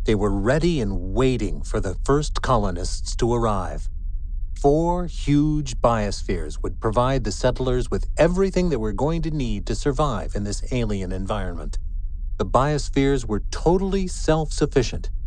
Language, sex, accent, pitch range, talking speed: English, male, American, 90-140 Hz, 140 wpm